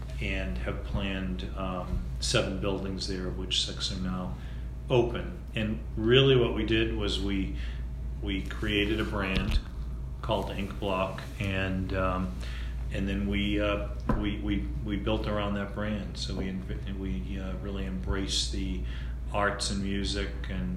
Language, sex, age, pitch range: English, male, 40-59, 65-100 Hz